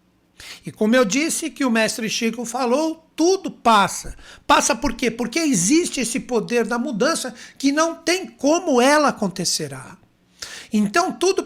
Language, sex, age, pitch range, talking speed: Portuguese, male, 60-79, 220-280 Hz, 145 wpm